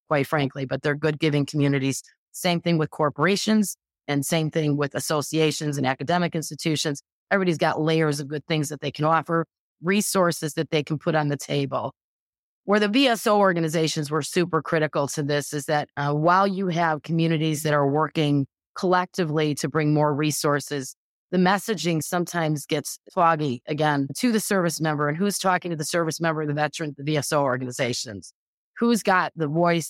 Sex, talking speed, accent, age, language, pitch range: female, 175 wpm, American, 30-49, English, 145-170 Hz